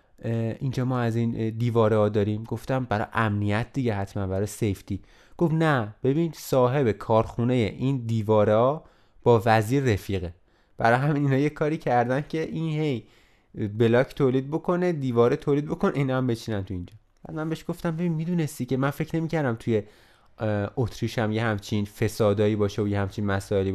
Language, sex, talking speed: Persian, male, 165 wpm